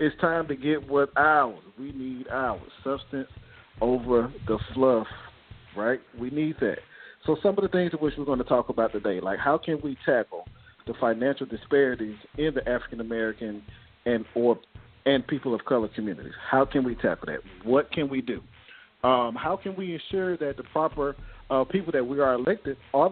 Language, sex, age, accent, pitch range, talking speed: English, male, 40-59, American, 120-160 Hz, 185 wpm